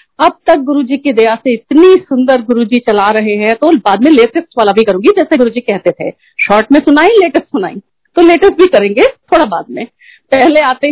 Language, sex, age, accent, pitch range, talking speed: Hindi, female, 50-69, native, 210-300 Hz, 210 wpm